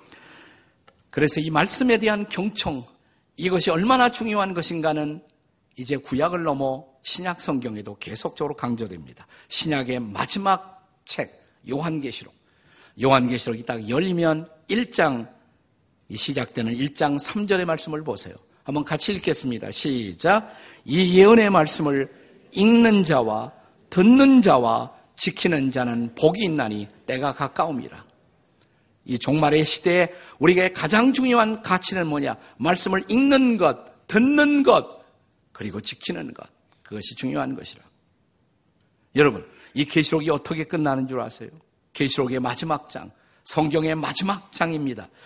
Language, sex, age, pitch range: Korean, male, 50-69, 130-185 Hz